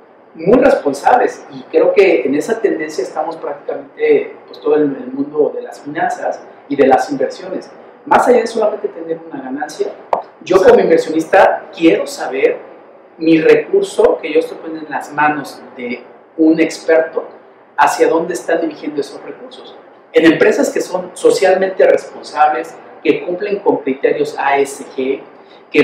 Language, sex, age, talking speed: Spanish, male, 50-69, 145 wpm